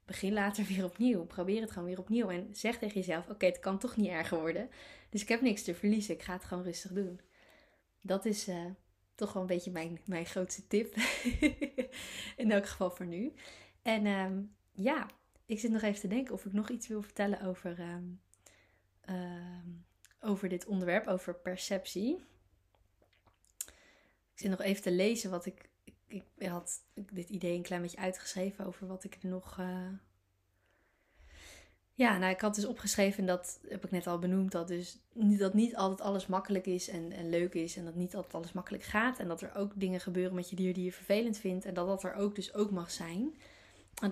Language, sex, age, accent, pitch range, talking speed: Dutch, female, 20-39, Dutch, 180-205 Hz, 200 wpm